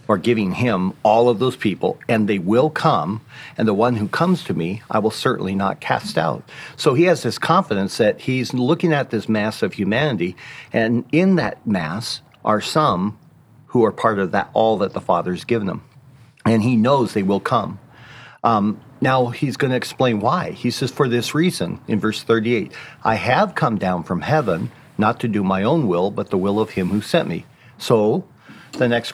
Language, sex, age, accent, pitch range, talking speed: English, male, 50-69, American, 105-135 Hz, 200 wpm